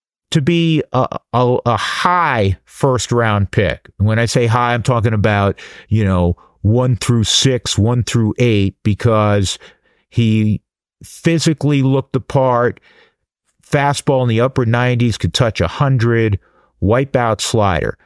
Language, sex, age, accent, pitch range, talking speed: English, male, 50-69, American, 105-130 Hz, 135 wpm